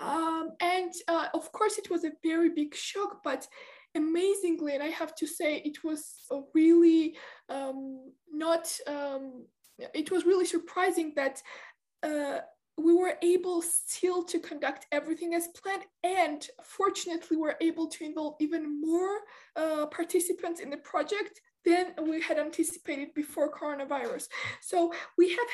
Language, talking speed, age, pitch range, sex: English, 145 wpm, 20-39, 300-350 Hz, female